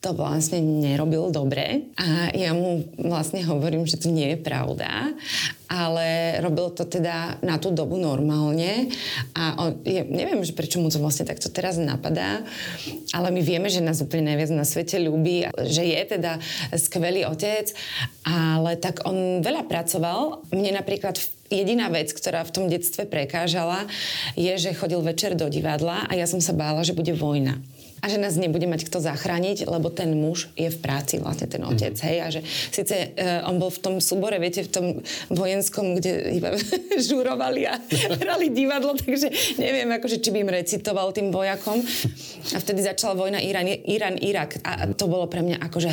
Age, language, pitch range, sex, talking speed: 20-39, Slovak, 160-195 Hz, female, 170 wpm